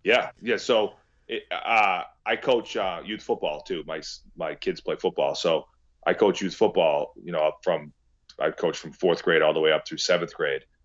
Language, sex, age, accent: English, male, 30-49, American